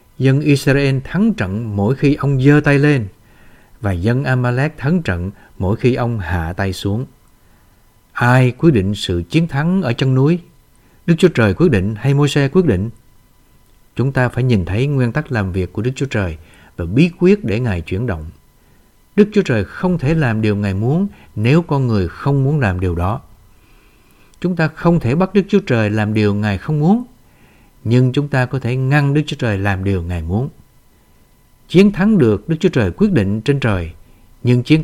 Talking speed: 195 wpm